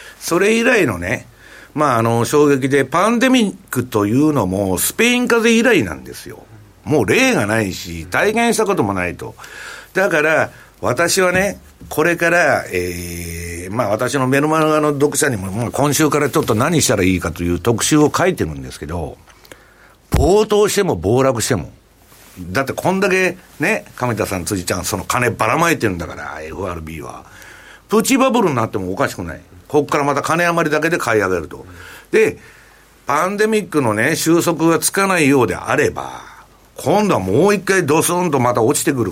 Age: 60-79